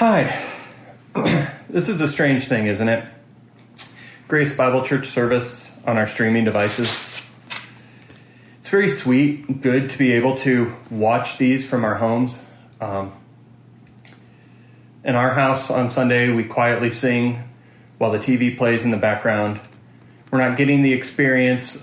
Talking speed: 135 wpm